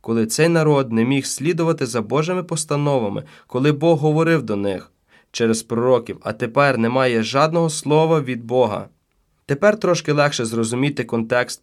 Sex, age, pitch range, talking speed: male, 20-39, 115-155 Hz, 145 wpm